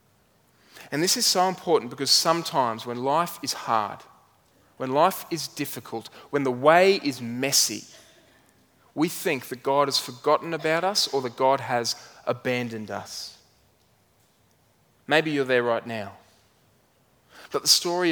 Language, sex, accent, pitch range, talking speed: English, male, Australian, 125-170 Hz, 140 wpm